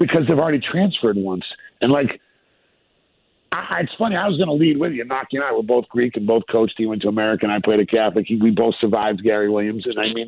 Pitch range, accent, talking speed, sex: 110-155 Hz, American, 255 wpm, male